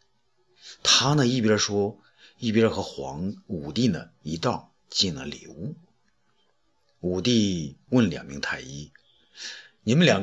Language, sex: Chinese, male